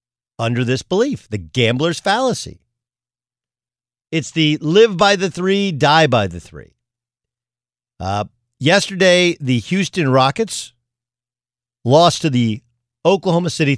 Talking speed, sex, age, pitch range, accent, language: 115 wpm, male, 50-69, 120-165 Hz, American, English